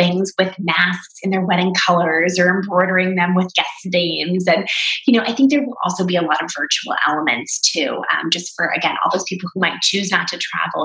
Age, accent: 20-39, American